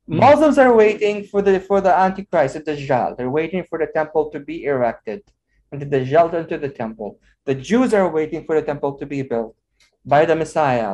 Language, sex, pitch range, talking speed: English, male, 150-220 Hz, 205 wpm